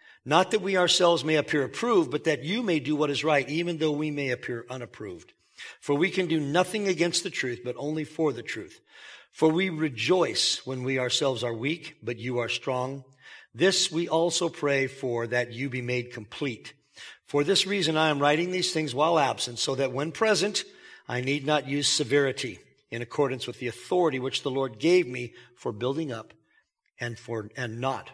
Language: English